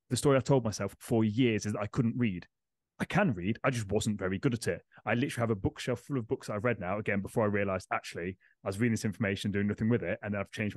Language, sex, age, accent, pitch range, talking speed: English, male, 30-49, British, 105-125 Hz, 290 wpm